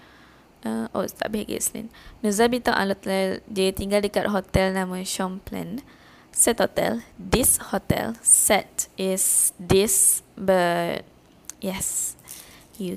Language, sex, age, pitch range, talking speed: Malay, female, 20-39, 185-220 Hz, 100 wpm